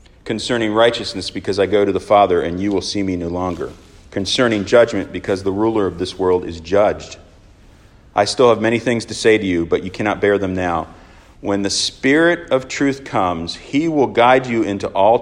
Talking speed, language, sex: 205 wpm, English, male